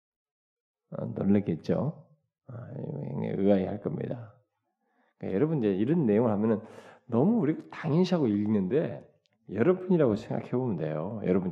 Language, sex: Korean, male